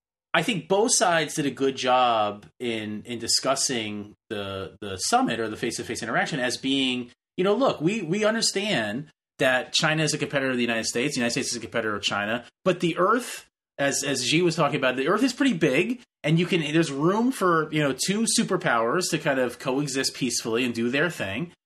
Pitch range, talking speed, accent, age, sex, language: 115-180 Hz, 215 wpm, American, 30-49, male, English